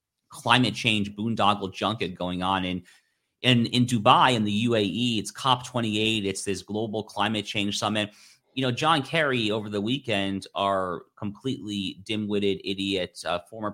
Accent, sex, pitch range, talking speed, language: American, male, 100-120 Hz, 155 wpm, English